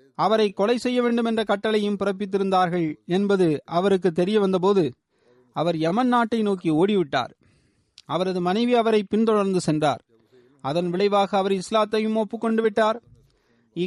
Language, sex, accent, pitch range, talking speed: Tamil, male, native, 175-230 Hz, 125 wpm